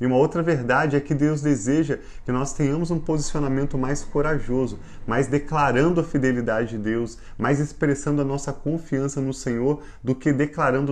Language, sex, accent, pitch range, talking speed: Portuguese, male, Brazilian, 125-145 Hz, 170 wpm